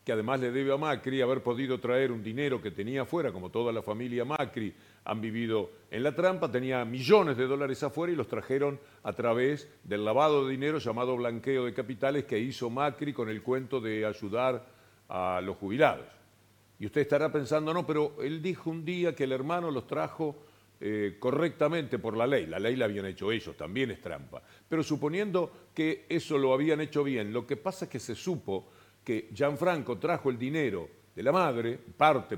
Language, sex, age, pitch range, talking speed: Spanish, male, 50-69, 115-155 Hz, 195 wpm